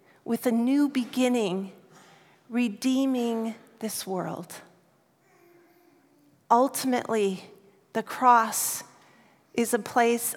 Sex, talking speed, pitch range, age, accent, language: female, 75 wpm, 210-255 Hz, 40-59, American, English